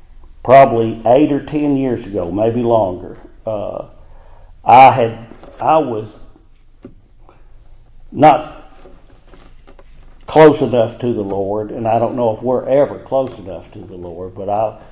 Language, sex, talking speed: English, male, 135 wpm